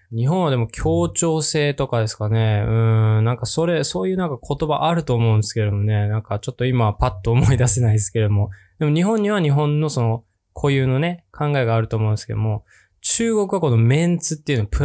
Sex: male